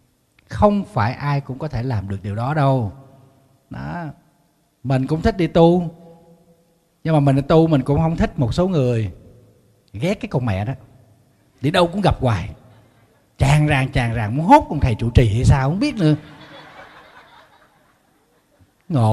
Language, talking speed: Vietnamese, 175 wpm